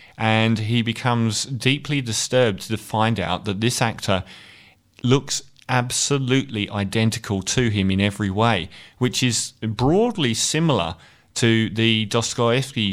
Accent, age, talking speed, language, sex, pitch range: British, 30-49, 120 wpm, English, male, 100-115 Hz